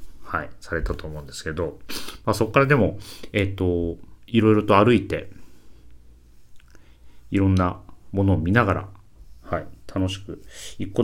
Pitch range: 75-105 Hz